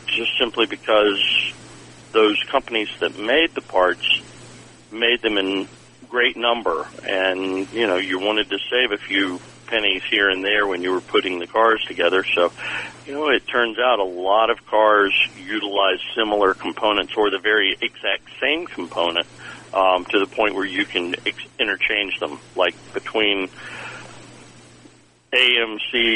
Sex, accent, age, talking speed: male, American, 50-69, 150 wpm